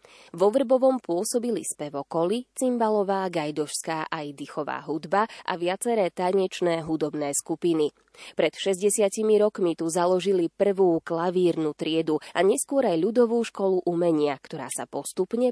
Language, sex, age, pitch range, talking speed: Slovak, female, 20-39, 155-210 Hz, 120 wpm